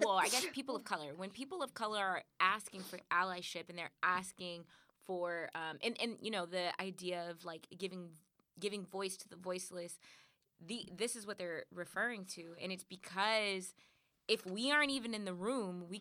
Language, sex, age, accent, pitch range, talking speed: English, female, 20-39, American, 170-210 Hz, 190 wpm